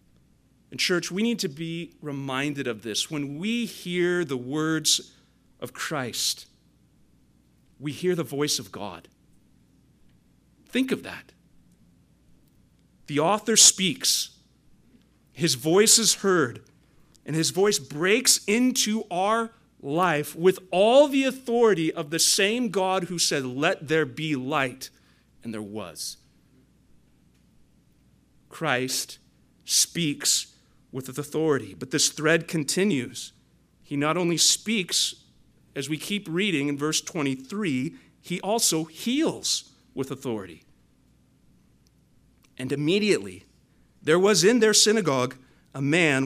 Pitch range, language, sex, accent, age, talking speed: 135-180 Hz, English, male, American, 40-59, 115 wpm